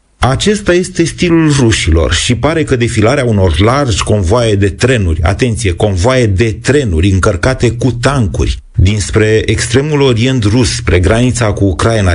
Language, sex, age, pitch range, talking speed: Romanian, male, 40-59, 100-130 Hz, 140 wpm